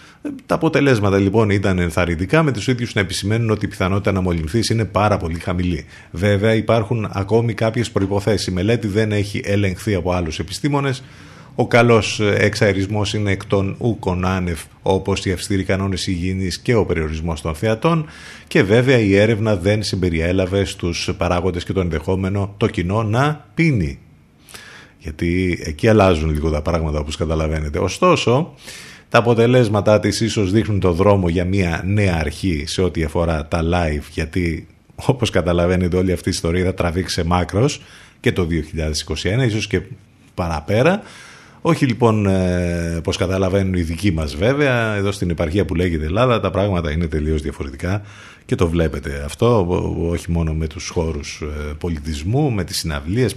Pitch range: 85-110 Hz